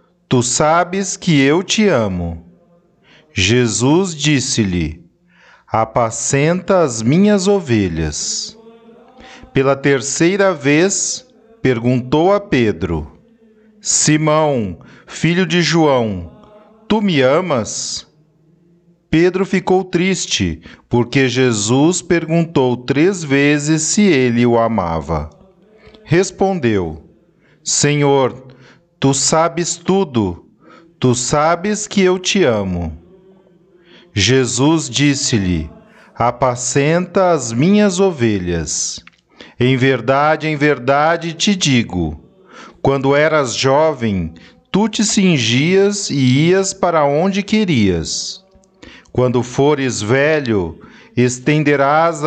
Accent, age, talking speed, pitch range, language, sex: Brazilian, 40-59, 85 wpm, 120-185 Hz, Portuguese, male